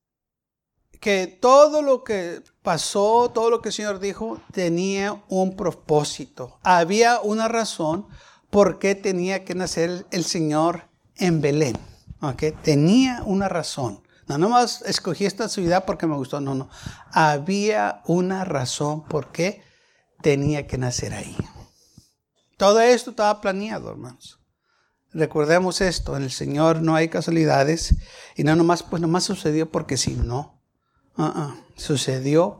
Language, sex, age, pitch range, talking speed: Spanish, male, 60-79, 150-205 Hz, 135 wpm